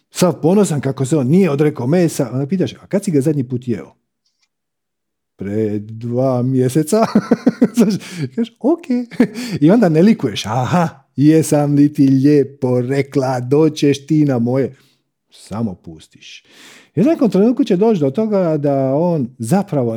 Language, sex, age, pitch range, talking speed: Croatian, male, 50-69, 125-185 Hz, 145 wpm